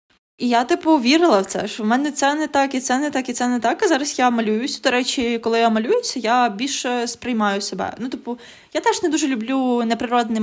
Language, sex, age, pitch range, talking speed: Ukrainian, female, 20-39, 220-275 Hz, 235 wpm